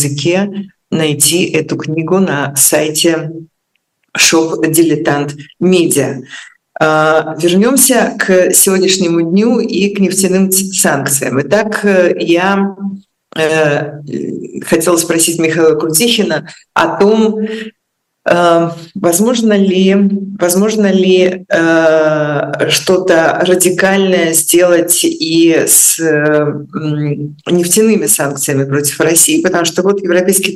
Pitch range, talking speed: 155-195 Hz, 75 wpm